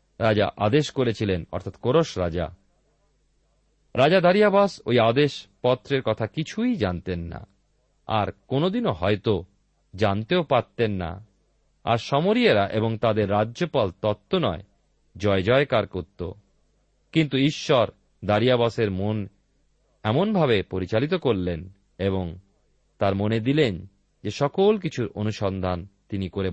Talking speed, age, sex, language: 110 wpm, 40-59, male, Bengali